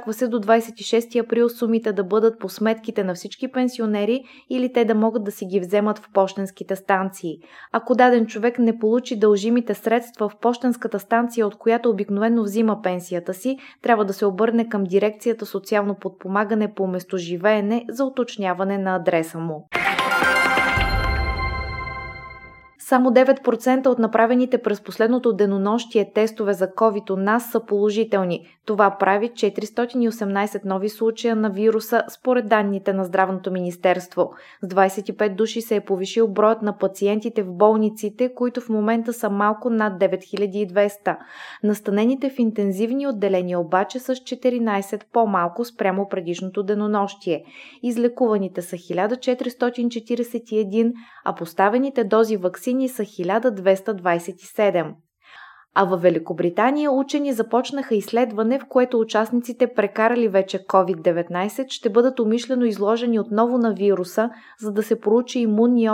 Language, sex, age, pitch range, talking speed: Bulgarian, female, 20-39, 195-235 Hz, 130 wpm